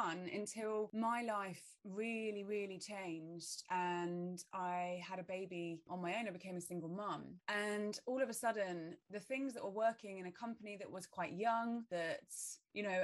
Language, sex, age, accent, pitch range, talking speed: English, female, 20-39, British, 175-205 Hz, 180 wpm